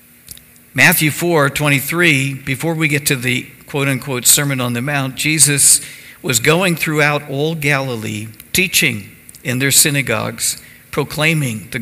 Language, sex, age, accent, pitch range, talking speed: English, male, 60-79, American, 120-150 Hz, 125 wpm